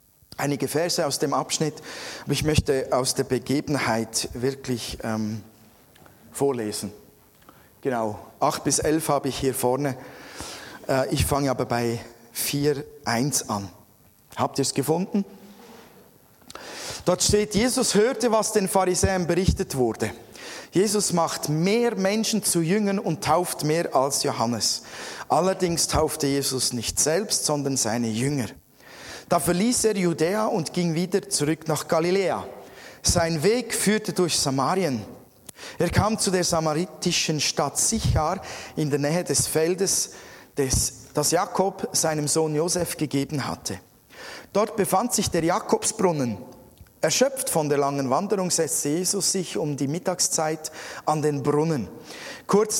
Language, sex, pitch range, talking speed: German, male, 135-185 Hz, 130 wpm